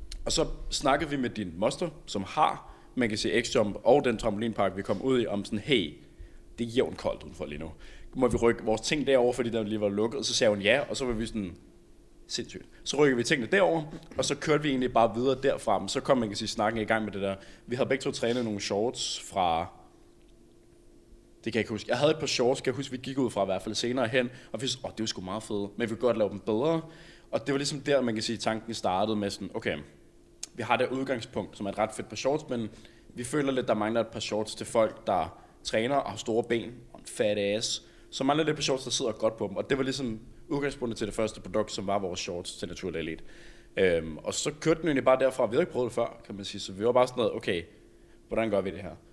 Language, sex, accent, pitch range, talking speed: Danish, male, native, 105-130 Hz, 270 wpm